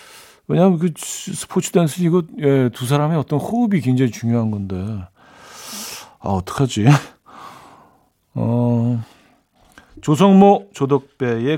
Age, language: 40-59, Korean